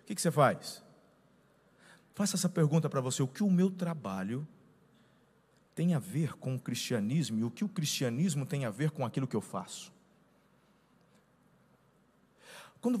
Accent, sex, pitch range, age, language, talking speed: Brazilian, male, 155-235 Hz, 40-59, Portuguese, 155 wpm